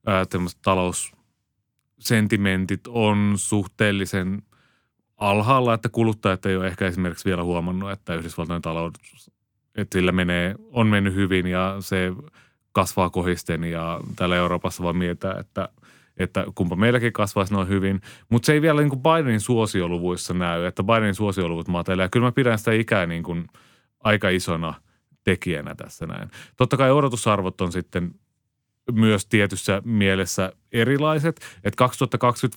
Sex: male